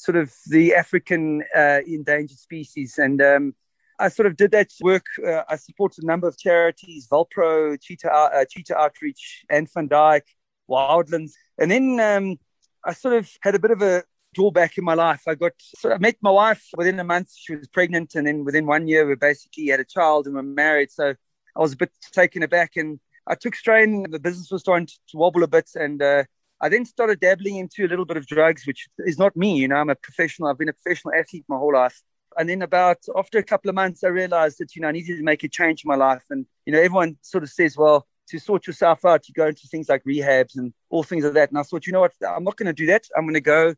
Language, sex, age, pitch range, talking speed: English, male, 30-49, 150-180 Hz, 250 wpm